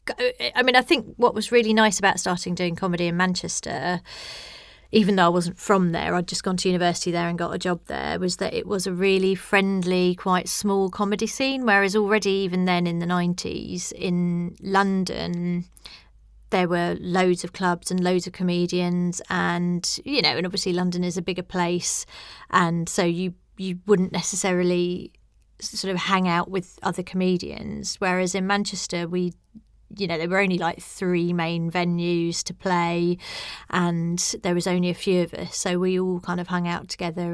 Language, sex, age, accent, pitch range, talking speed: English, female, 30-49, British, 175-195 Hz, 185 wpm